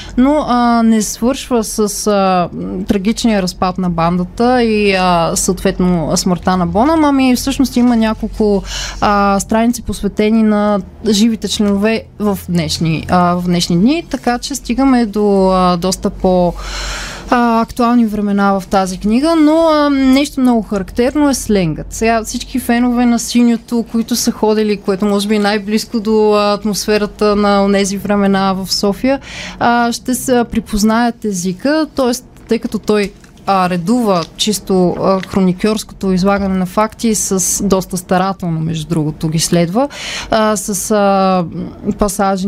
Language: Bulgarian